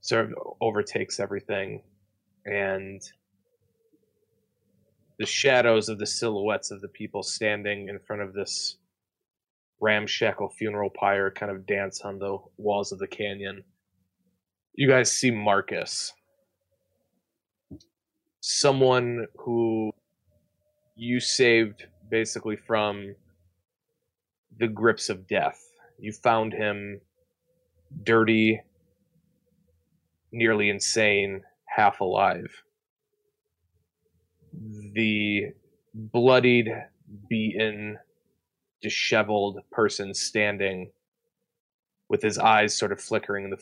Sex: male